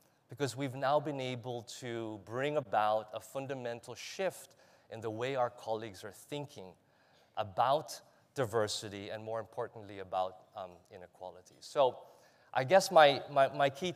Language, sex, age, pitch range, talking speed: English, male, 30-49, 120-160 Hz, 140 wpm